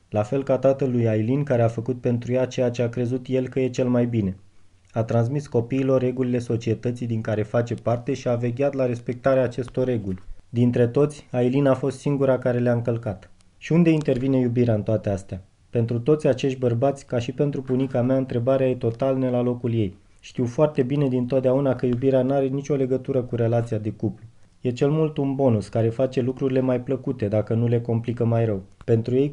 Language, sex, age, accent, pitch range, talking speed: Romanian, male, 20-39, native, 115-135 Hz, 205 wpm